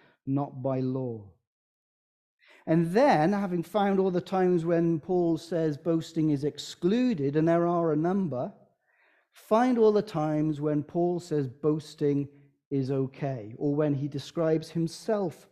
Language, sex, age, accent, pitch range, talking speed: English, male, 40-59, British, 145-200 Hz, 140 wpm